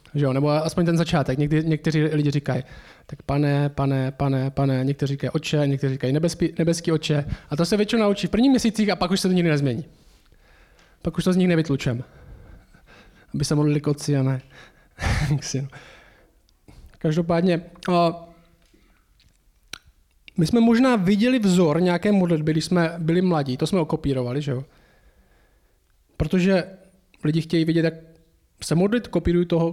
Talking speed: 155 wpm